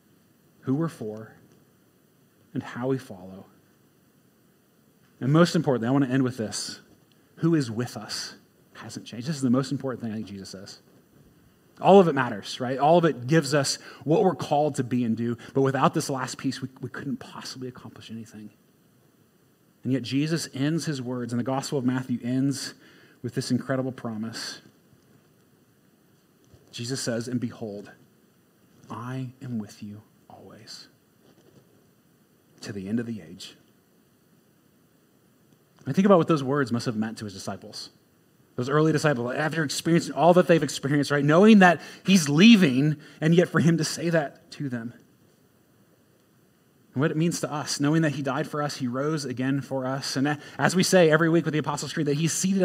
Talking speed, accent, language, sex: 175 wpm, American, English, male